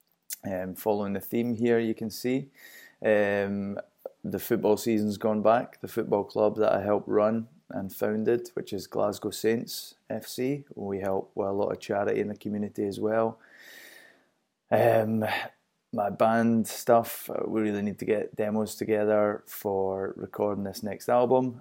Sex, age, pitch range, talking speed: male, 20-39, 100-110 Hz, 155 wpm